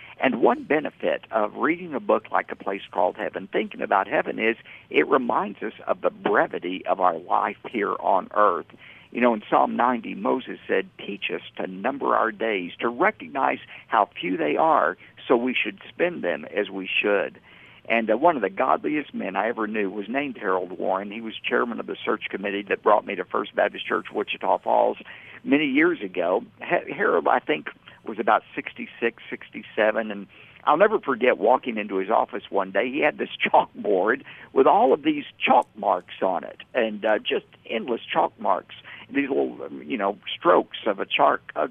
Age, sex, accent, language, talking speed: 50-69, male, American, English, 190 wpm